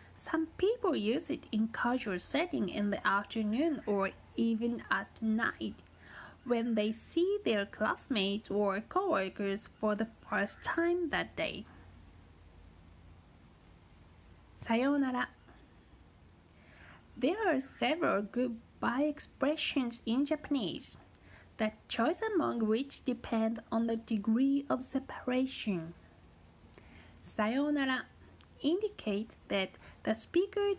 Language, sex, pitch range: Japanese, female, 200-275 Hz